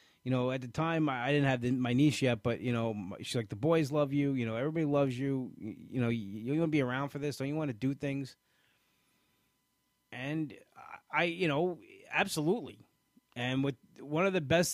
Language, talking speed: English, 220 wpm